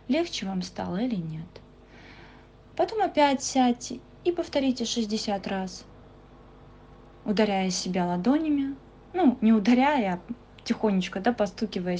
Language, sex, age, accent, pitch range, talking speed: Russian, female, 20-39, native, 195-245 Hz, 105 wpm